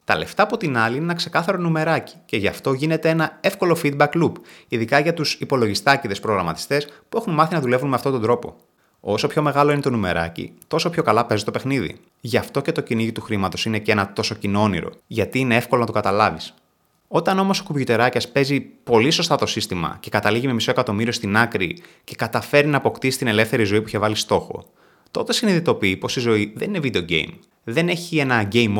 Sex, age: male, 20-39